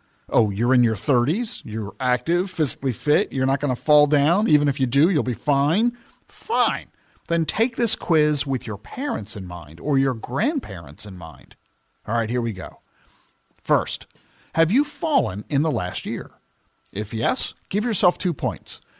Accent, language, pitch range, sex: American, English, 115-165 Hz, male